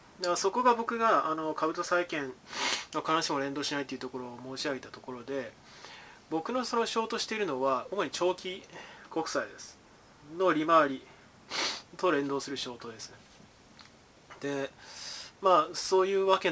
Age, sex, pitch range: 20-39, male, 135-190 Hz